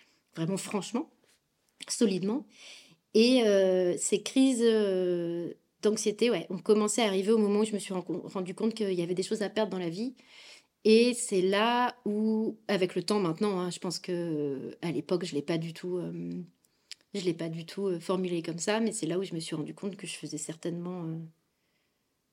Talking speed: 200 wpm